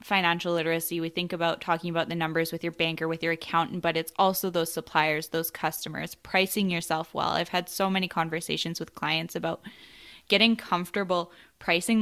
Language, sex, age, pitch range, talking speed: English, female, 10-29, 165-190 Hz, 180 wpm